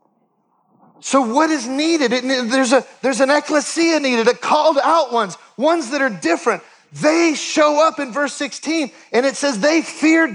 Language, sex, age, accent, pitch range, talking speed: English, male, 40-59, American, 245-310 Hz, 160 wpm